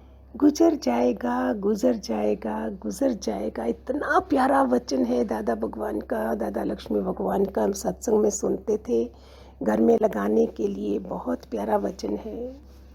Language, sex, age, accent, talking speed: Hindi, female, 50-69, native, 145 wpm